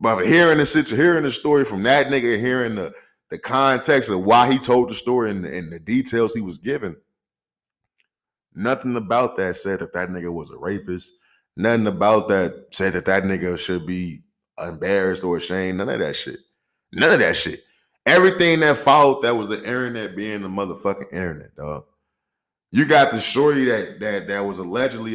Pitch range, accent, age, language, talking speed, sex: 95-135 Hz, American, 20-39, English, 185 wpm, male